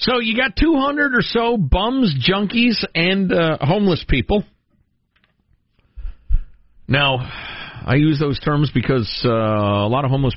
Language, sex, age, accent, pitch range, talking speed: English, male, 50-69, American, 115-185 Hz, 135 wpm